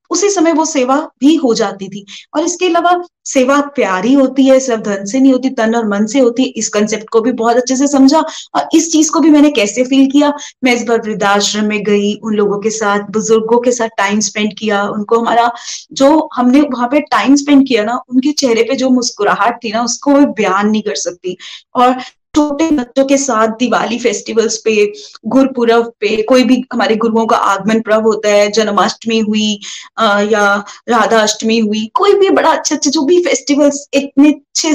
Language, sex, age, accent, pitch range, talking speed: Hindi, female, 20-39, native, 220-285 Hz, 200 wpm